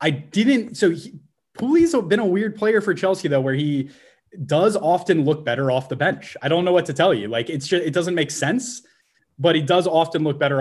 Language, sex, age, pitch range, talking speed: English, male, 20-39, 135-185 Hz, 230 wpm